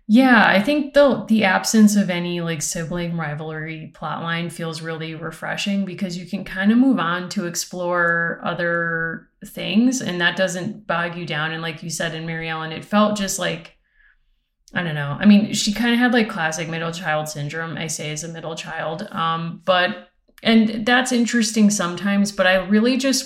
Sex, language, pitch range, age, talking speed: female, English, 165-200 Hz, 30-49, 190 wpm